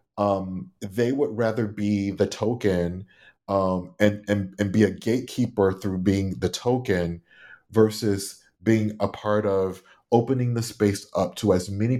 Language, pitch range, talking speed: English, 95-110 Hz, 150 wpm